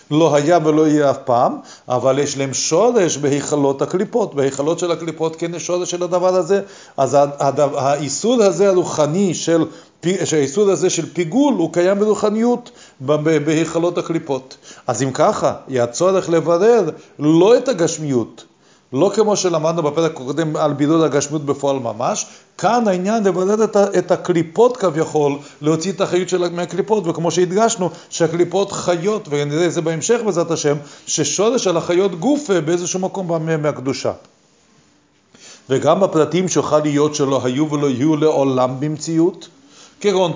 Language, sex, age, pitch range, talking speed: Hebrew, male, 40-59, 145-185 Hz, 140 wpm